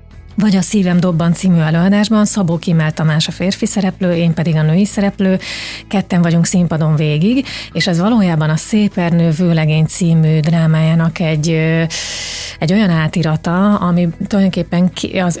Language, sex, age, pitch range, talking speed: Hungarian, female, 30-49, 165-190 Hz, 140 wpm